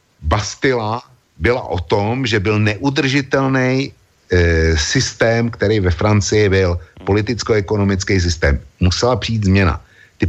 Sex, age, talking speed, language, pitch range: male, 60-79, 110 wpm, Slovak, 95-125 Hz